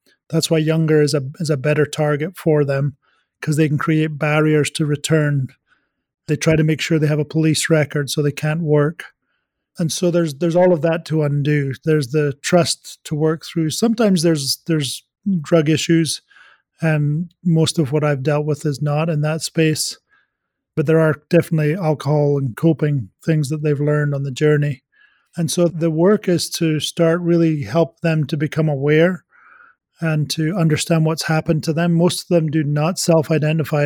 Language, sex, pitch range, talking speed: English, male, 150-165 Hz, 185 wpm